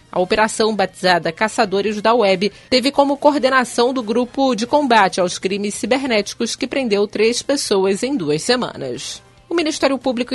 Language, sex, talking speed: Portuguese, female, 150 wpm